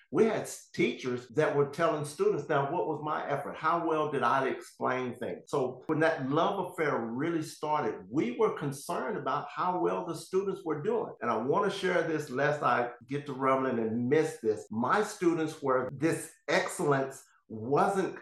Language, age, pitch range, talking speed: English, 50-69, 120-165 Hz, 180 wpm